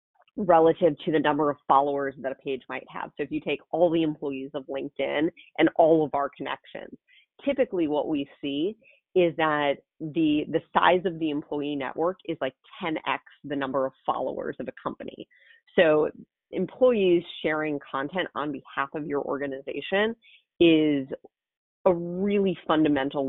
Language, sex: English, female